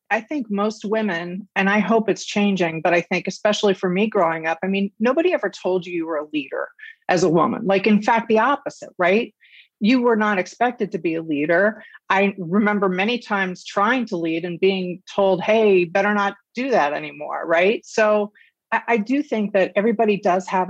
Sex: female